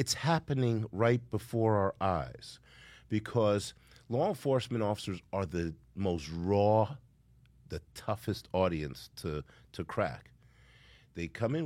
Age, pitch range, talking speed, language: 50-69, 80-115 Hz, 120 wpm, English